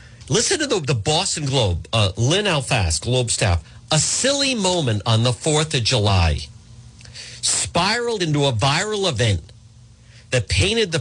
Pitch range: 115-195 Hz